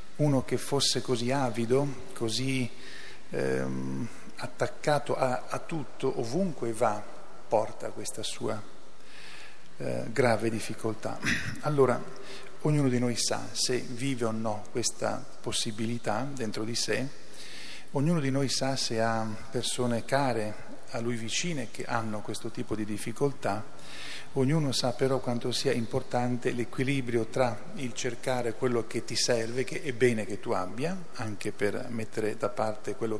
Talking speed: 135 wpm